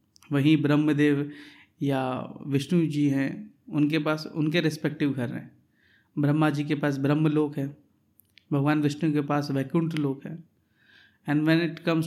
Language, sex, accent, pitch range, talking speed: Hindi, male, native, 130-165 Hz, 150 wpm